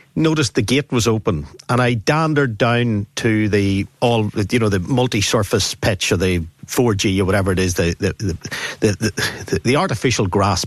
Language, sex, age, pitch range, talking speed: English, male, 50-69, 100-135 Hz, 185 wpm